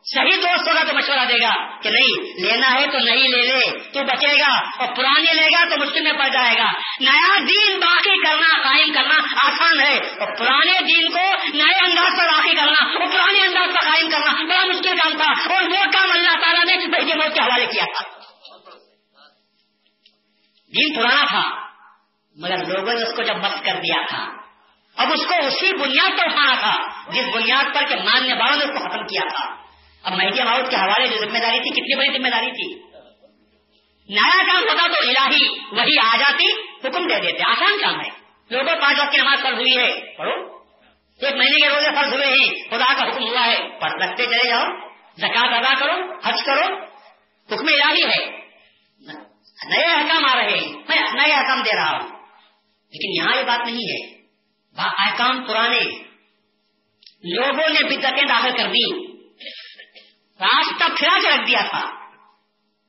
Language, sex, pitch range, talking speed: Urdu, female, 240-345 Hz, 170 wpm